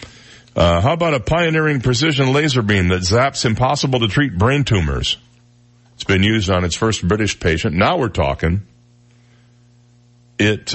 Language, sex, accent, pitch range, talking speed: English, male, American, 95-120 Hz, 150 wpm